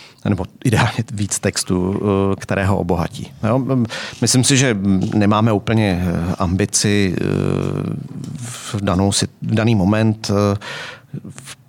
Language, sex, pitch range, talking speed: Czech, male, 95-110 Hz, 105 wpm